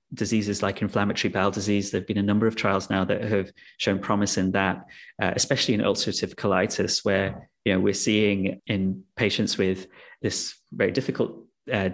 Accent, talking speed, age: British, 175 wpm, 30-49